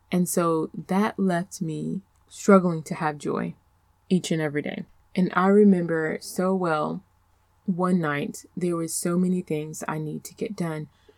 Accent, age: American, 20-39